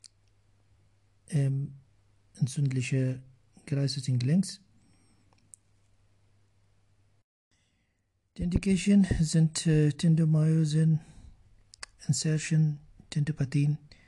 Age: 60-79